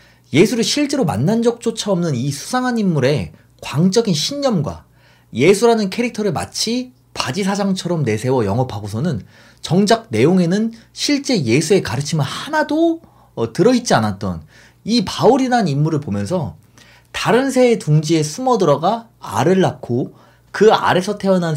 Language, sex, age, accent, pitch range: Korean, male, 30-49, native, 130-210 Hz